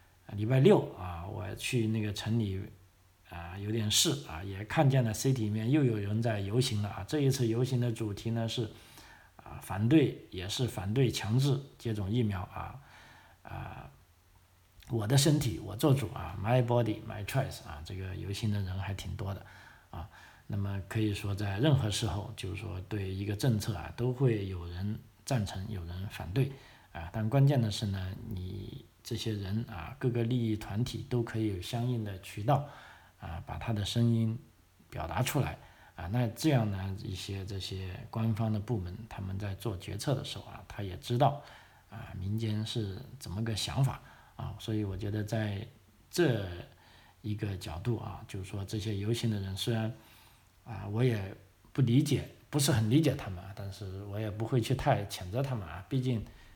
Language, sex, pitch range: Chinese, male, 95-120 Hz